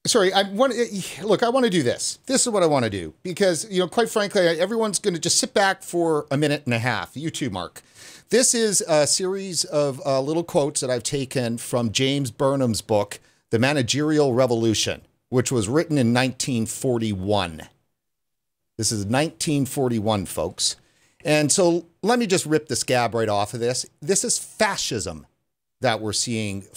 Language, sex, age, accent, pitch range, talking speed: English, male, 40-59, American, 120-175 Hz, 180 wpm